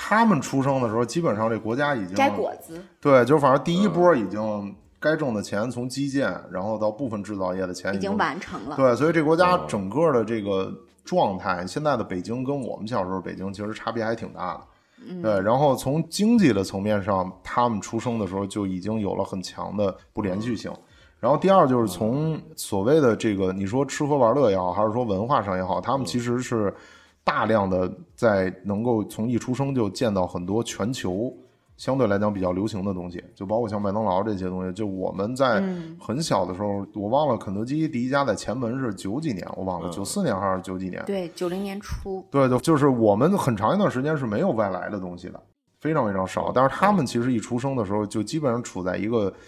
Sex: male